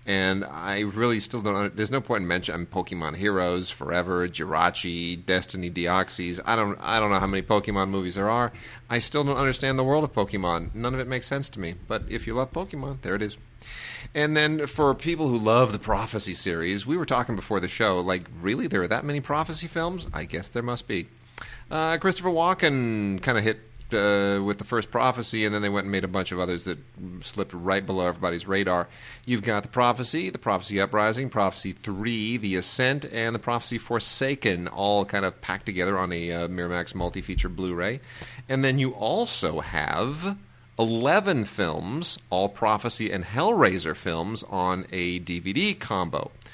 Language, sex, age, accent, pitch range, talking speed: English, male, 40-59, American, 95-120 Hz, 190 wpm